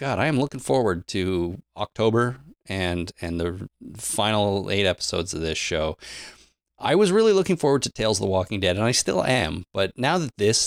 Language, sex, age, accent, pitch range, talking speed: English, male, 30-49, American, 90-110 Hz, 195 wpm